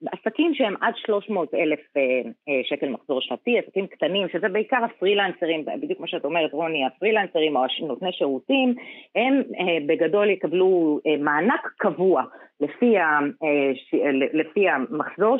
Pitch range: 145-225 Hz